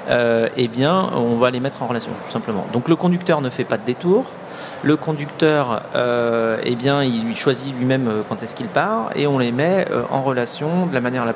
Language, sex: French, male